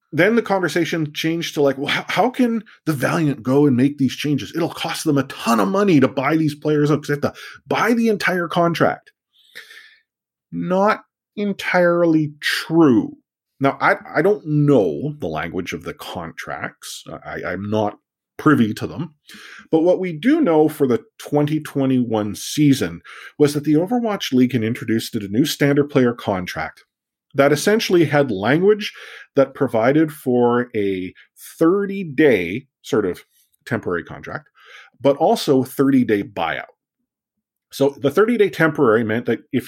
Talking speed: 150 wpm